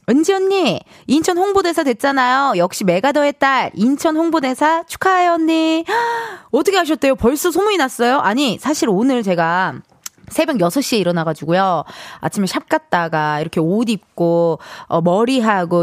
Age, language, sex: 20-39, Korean, female